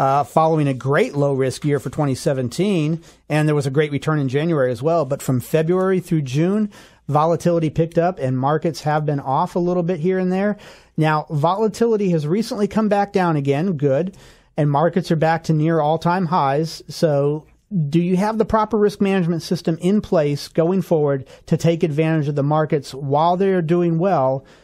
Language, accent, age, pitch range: English, American, 40-59, 145-175 Hz